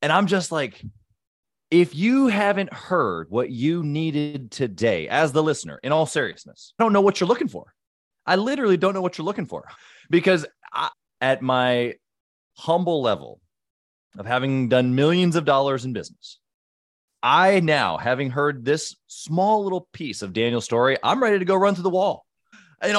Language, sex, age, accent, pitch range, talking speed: English, male, 30-49, American, 120-170 Hz, 170 wpm